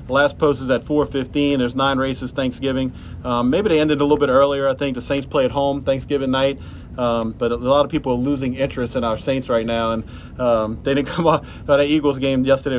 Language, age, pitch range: English, 40-59, 125-145 Hz